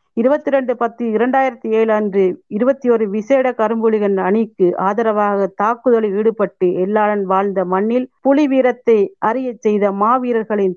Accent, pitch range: native, 195-235 Hz